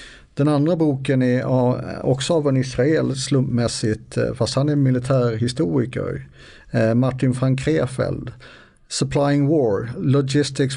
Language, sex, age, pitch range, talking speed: Swedish, male, 50-69, 120-140 Hz, 100 wpm